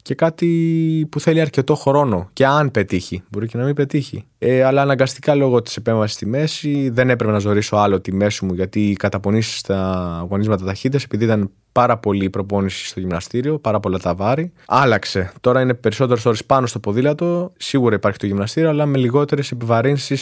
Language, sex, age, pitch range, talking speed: Greek, male, 20-39, 110-140 Hz, 190 wpm